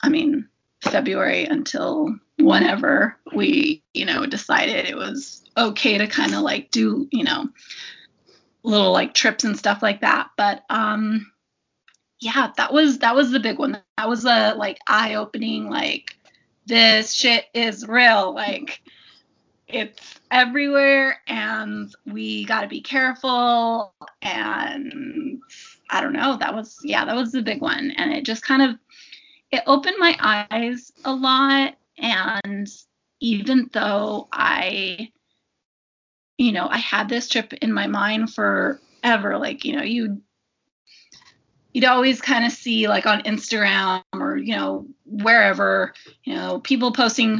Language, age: English, 20-39